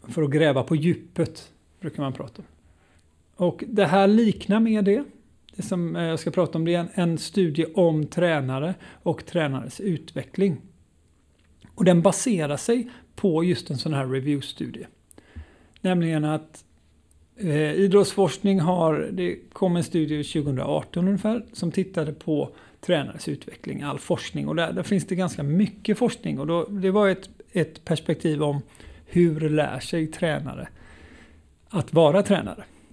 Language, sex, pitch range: Swedish, male, 145-185 Hz